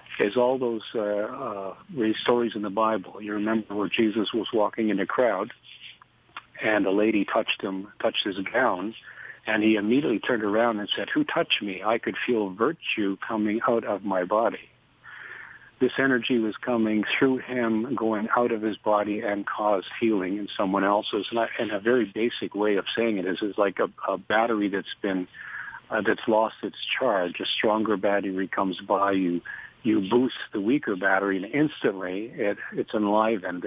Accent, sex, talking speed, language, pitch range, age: American, male, 175 wpm, English, 100-115 Hz, 60-79